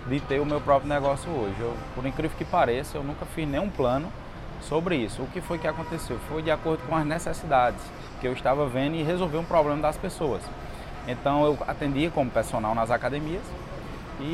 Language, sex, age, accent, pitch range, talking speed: Portuguese, male, 20-39, Brazilian, 125-155 Hz, 200 wpm